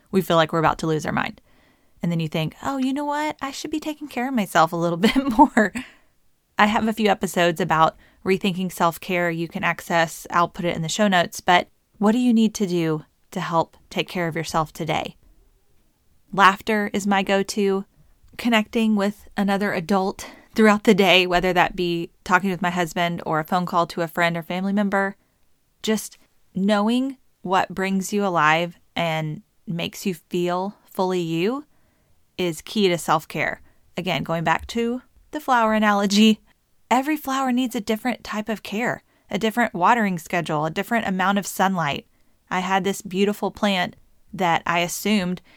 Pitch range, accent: 175-220 Hz, American